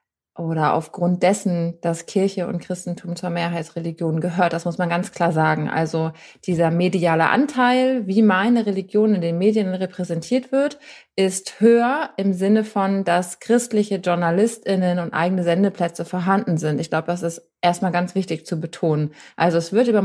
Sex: female